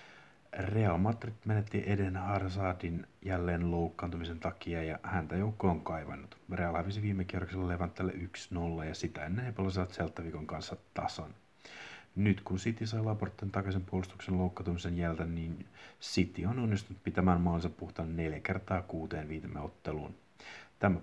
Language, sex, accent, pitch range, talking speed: Finnish, male, native, 85-100 Hz, 130 wpm